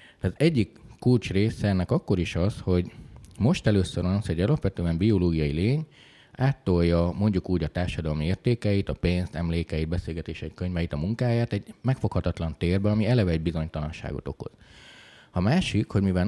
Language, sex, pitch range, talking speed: Hungarian, male, 80-110 Hz, 150 wpm